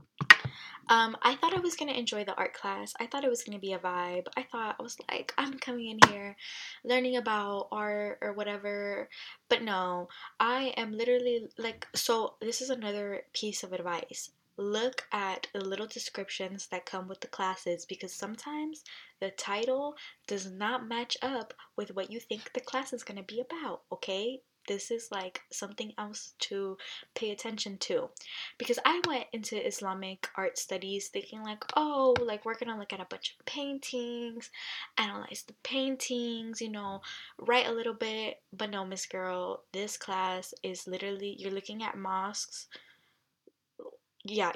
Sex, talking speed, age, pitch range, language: female, 175 wpm, 10-29, 190-240 Hz, English